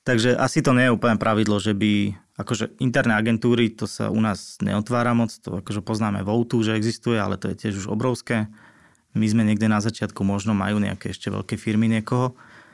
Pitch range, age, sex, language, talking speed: 110-125 Hz, 20-39, male, Slovak, 200 wpm